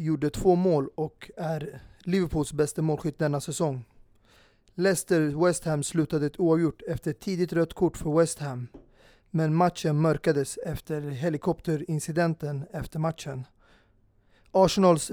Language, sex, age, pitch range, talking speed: Swedish, male, 30-49, 145-170 Hz, 125 wpm